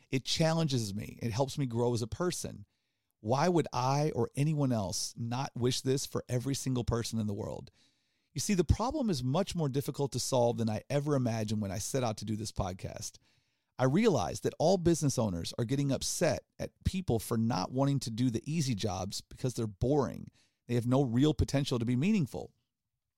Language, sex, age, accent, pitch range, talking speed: English, male, 40-59, American, 115-155 Hz, 200 wpm